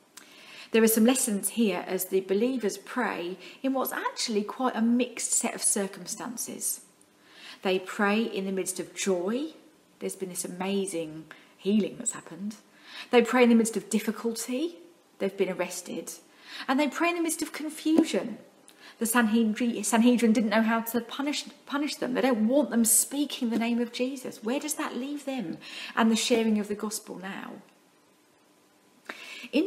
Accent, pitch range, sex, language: British, 195-255 Hz, female, English